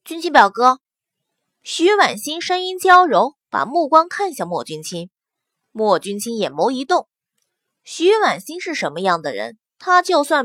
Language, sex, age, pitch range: Chinese, female, 20-39, 245-355 Hz